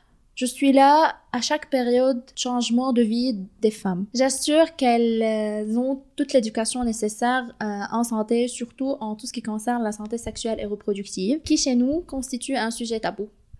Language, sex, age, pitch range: French, female, 20-39, 220-260 Hz